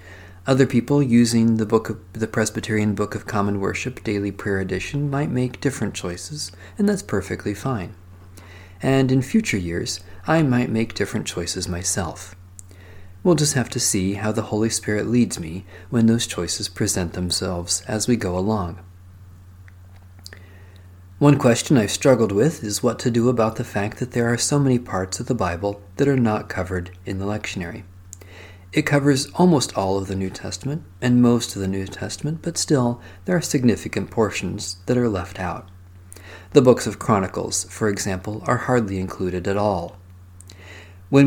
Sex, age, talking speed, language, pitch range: male, 40-59, 170 wpm, English, 90-125 Hz